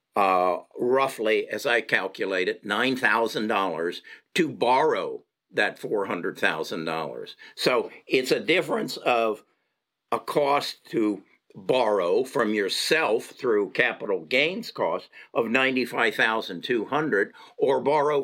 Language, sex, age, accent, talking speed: English, male, 50-69, American, 130 wpm